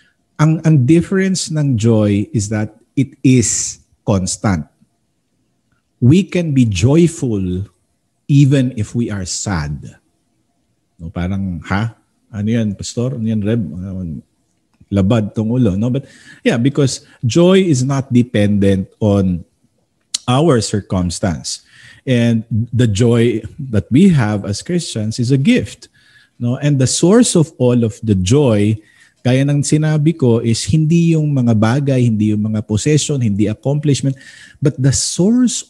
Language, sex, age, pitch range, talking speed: Filipino, male, 50-69, 105-140 Hz, 135 wpm